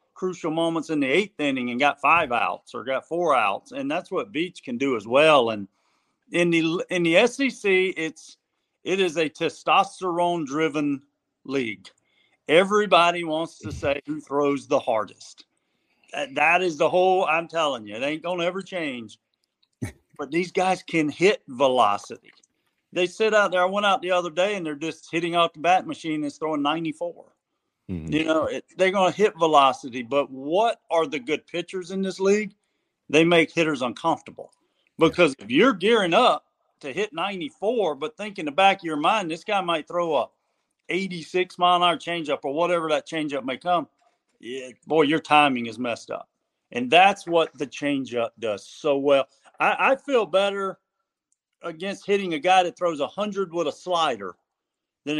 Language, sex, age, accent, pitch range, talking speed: English, male, 50-69, American, 150-185 Hz, 175 wpm